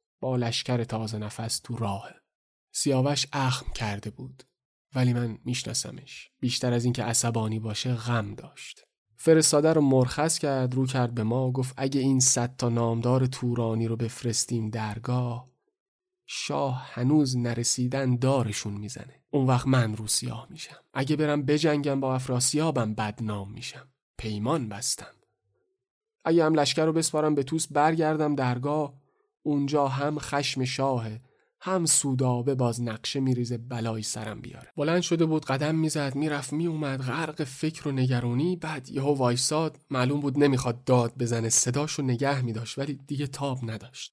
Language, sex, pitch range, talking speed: Persian, male, 120-150 Hz, 145 wpm